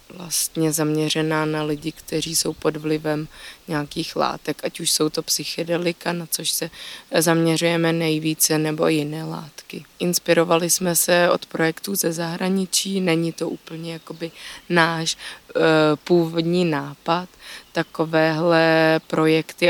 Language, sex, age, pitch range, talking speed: Slovak, female, 20-39, 155-165 Hz, 120 wpm